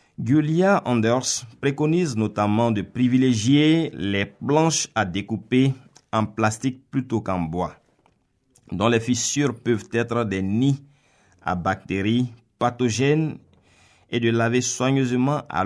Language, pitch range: French, 95-130 Hz